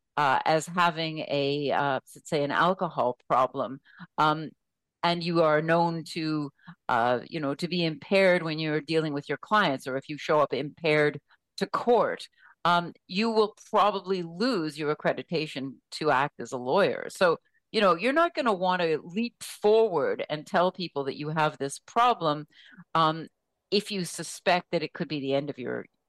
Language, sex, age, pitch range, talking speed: English, female, 50-69, 150-185 Hz, 180 wpm